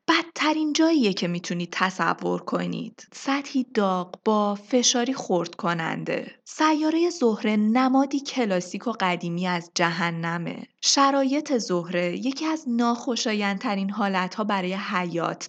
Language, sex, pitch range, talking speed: Persian, female, 180-270 Hz, 110 wpm